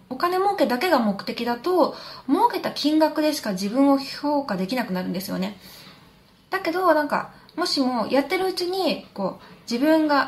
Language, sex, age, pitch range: Japanese, female, 20-39, 200-290 Hz